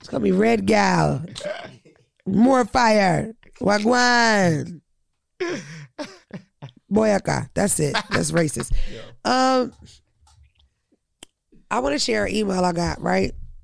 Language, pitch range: English, 170-215 Hz